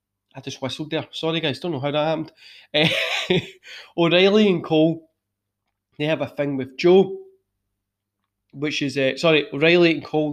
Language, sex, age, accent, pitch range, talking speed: English, male, 20-39, British, 130-165 Hz, 165 wpm